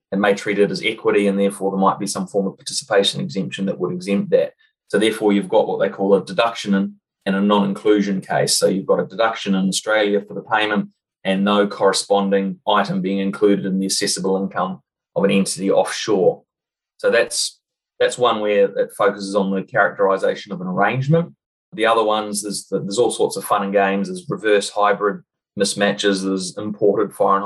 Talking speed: 200 wpm